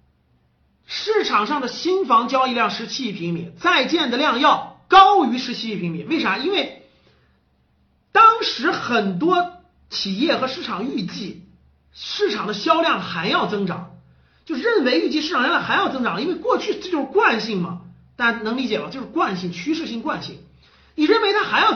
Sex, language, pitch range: male, Chinese, 195-330 Hz